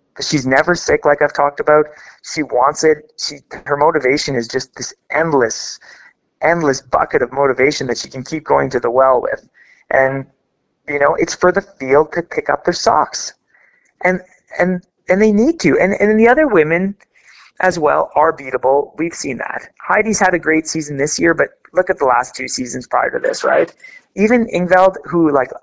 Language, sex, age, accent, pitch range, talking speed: English, male, 30-49, American, 130-175 Hz, 195 wpm